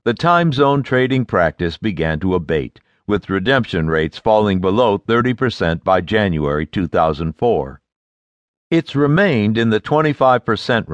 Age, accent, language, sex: 60-79, American, English, male